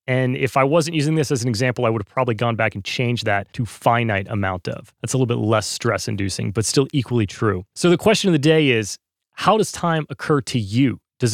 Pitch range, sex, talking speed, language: 115-155 Hz, male, 250 wpm, English